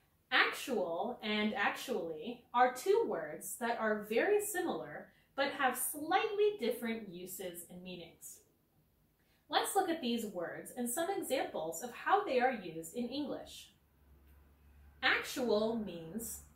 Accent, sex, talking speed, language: American, female, 125 wpm, English